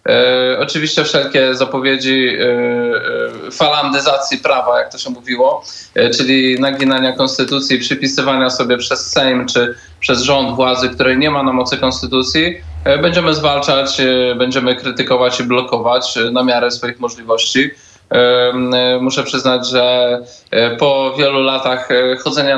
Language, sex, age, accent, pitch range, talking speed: Polish, male, 20-39, native, 125-145 Hz, 115 wpm